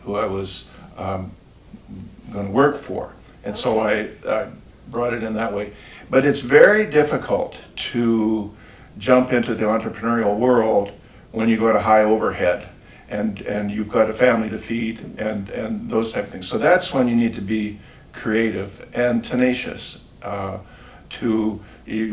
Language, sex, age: English, male, 60-79